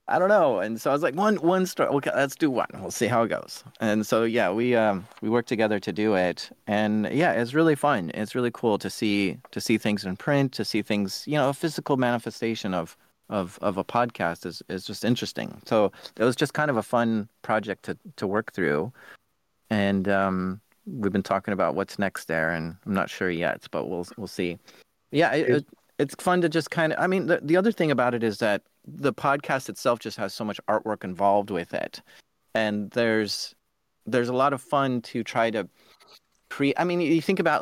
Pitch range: 105-140 Hz